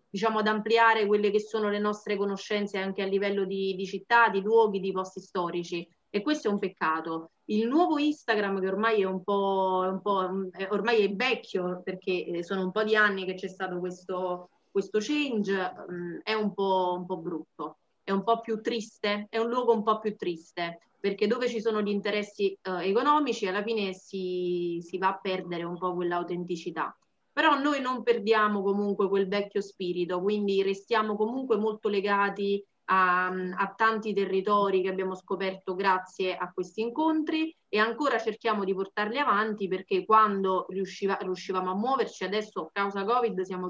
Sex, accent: female, native